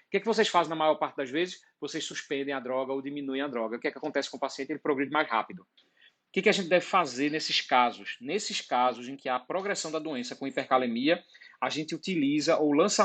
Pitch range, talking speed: 135-180 Hz, 245 wpm